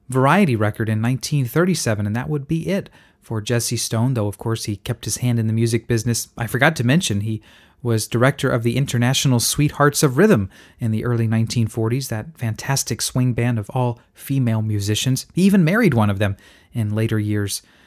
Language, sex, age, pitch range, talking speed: English, male, 30-49, 115-150 Hz, 190 wpm